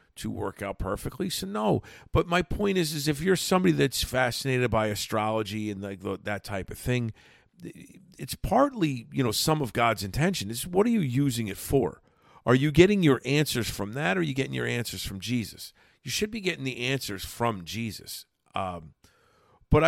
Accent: American